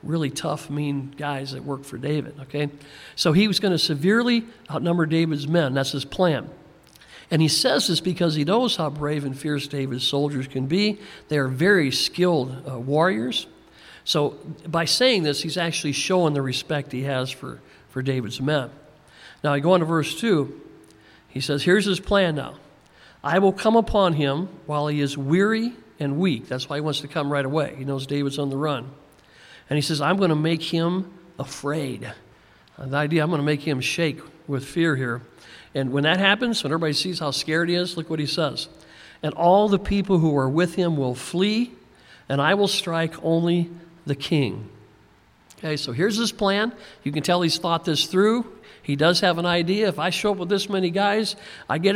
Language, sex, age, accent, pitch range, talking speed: English, male, 50-69, American, 140-180 Hz, 200 wpm